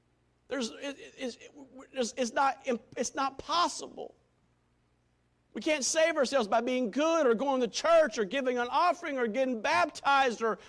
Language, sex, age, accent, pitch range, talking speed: English, male, 50-69, American, 165-255 Hz, 145 wpm